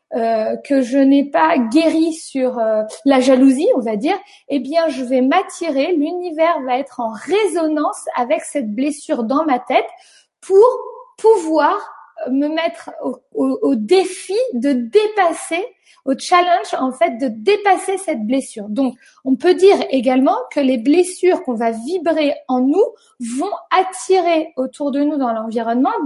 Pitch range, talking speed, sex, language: 255-355 Hz, 155 wpm, female, French